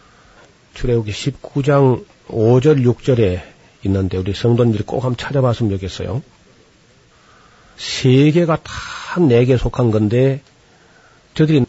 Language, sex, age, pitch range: Korean, male, 40-59, 110-140 Hz